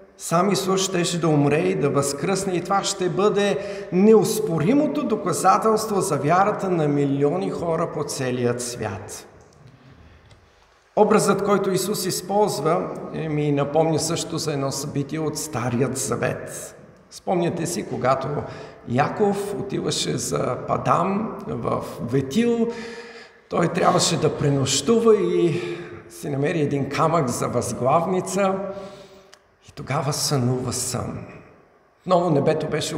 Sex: male